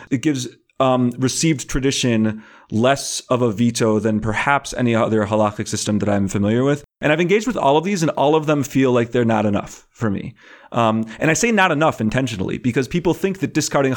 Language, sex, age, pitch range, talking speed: English, male, 30-49, 115-155 Hz, 210 wpm